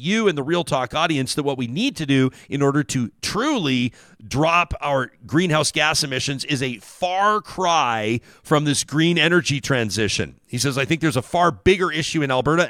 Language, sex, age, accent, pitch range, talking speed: English, male, 40-59, American, 120-160 Hz, 195 wpm